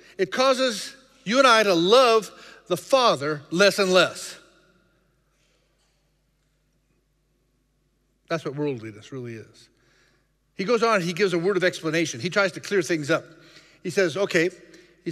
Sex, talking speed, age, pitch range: male, 145 wpm, 50-69, 160-205 Hz